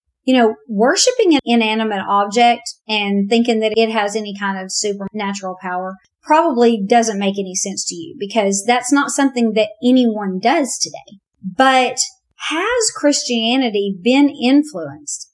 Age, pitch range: 40-59, 200-250 Hz